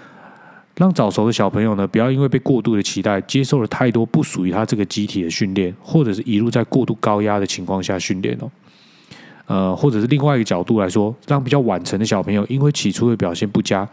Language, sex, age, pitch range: Chinese, male, 20-39, 100-130 Hz